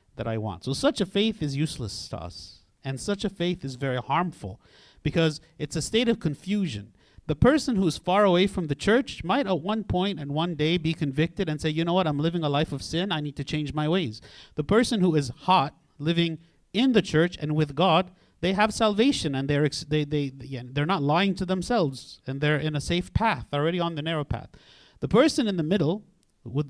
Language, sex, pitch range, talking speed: English, male, 135-185 Hz, 220 wpm